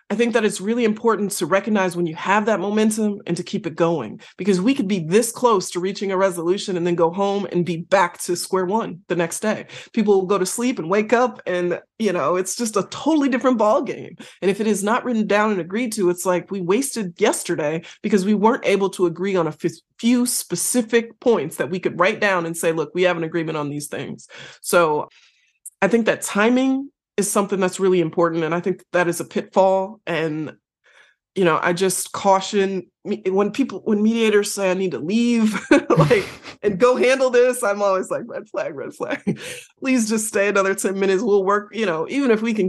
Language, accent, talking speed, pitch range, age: English, American, 220 wpm, 180-220 Hz, 30-49